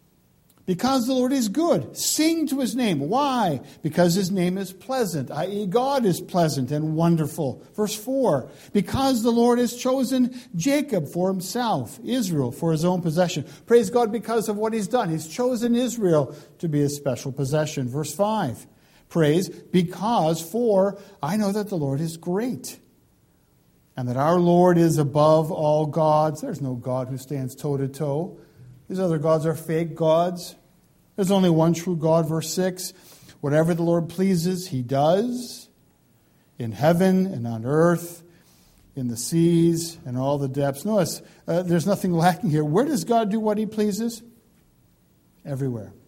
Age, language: 50-69, English